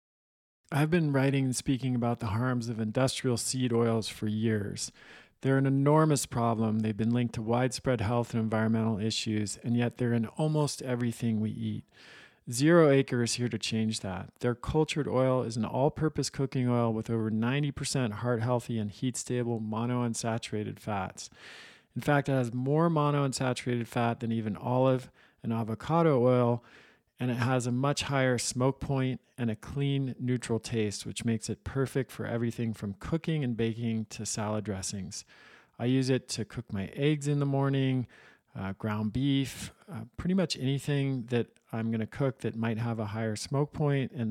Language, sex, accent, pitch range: English, male, American, 110-130 Hz